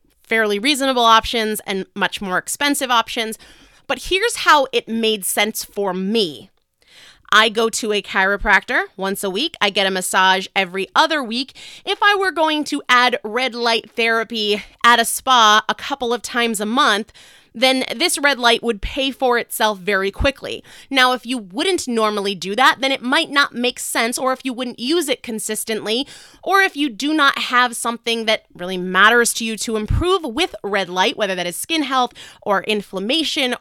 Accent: American